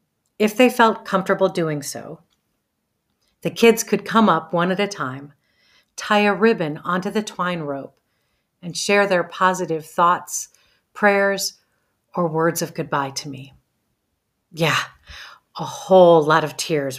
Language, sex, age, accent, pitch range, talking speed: English, female, 40-59, American, 150-195 Hz, 140 wpm